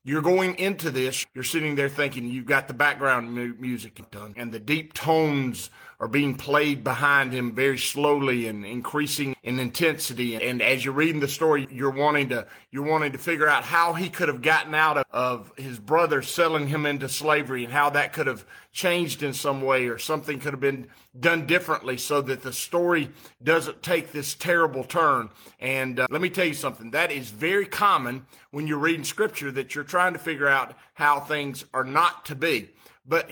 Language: English